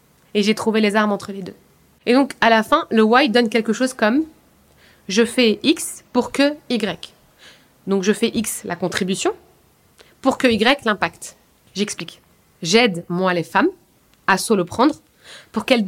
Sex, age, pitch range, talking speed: female, 20-39, 190-235 Hz, 175 wpm